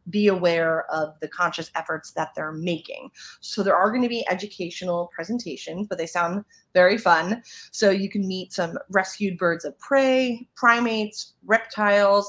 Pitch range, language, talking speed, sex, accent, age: 170-220 Hz, English, 155 wpm, female, American, 30-49